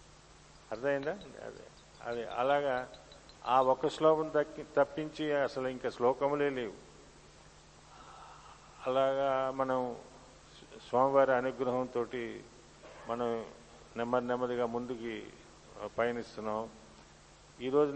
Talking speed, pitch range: 70 wpm, 120-145 Hz